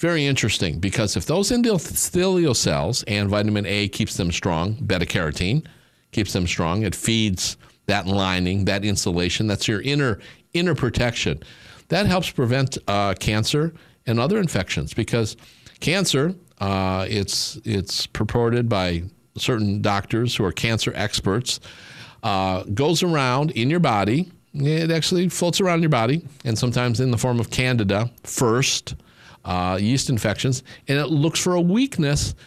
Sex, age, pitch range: male, 50-69, 105-145 Hz